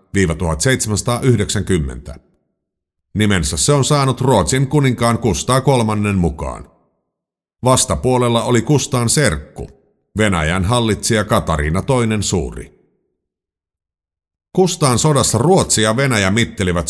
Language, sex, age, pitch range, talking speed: Finnish, male, 50-69, 85-125 Hz, 90 wpm